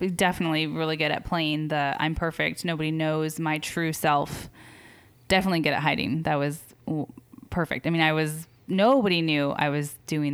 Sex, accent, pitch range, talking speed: female, American, 150-175 Hz, 170 wpm